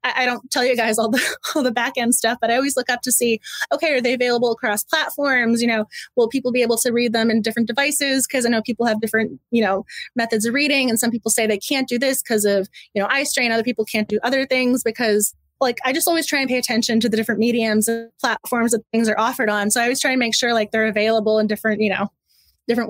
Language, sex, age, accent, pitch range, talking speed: English, female, 20-39, American, 225-280 Hz, 265 wpm